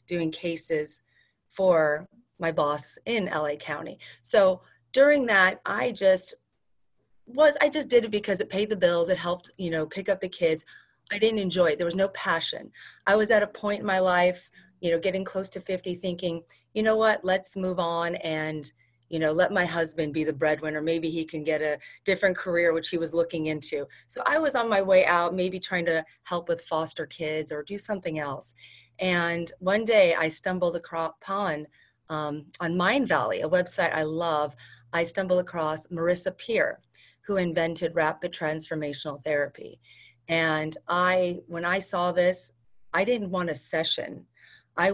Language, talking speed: English, 180 wpm